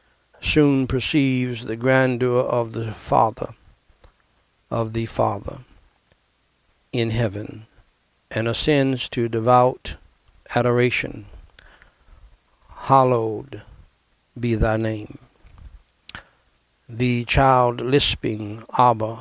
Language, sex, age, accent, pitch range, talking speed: English, male, 60-79, American, 95-125 Hz, 80 wpm